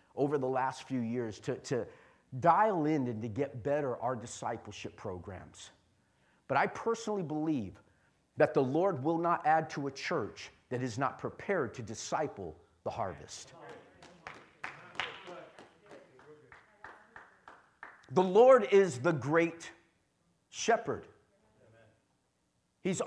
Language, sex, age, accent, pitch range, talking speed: English, male, 50-69, American, 190-285 Hz, 115 wpm